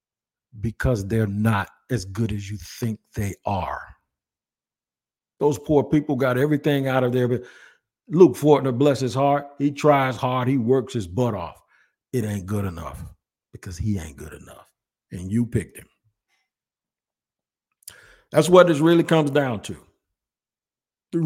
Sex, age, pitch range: male, 50-69, 105-145 Hz